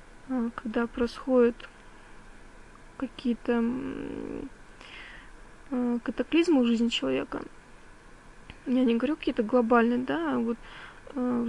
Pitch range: 235-260 Hz